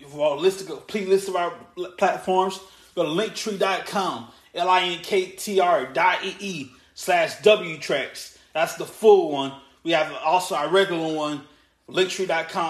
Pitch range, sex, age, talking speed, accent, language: 160-195 Hz, male, 20-39, 120 wpm, American, English